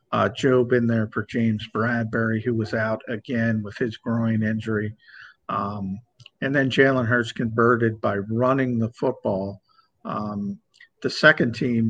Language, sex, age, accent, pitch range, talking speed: English, male, 50-69, American, 105-125 Hz, 145 wpm